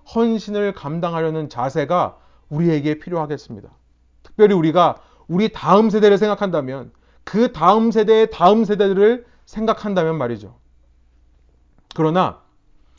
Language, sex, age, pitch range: Korean, male, 30-49, 135-225 Hz